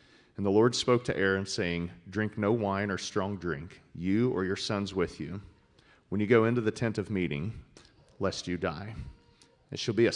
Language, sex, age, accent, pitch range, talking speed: English, male, 40-59, American, 90-110 Hz, 200 wpm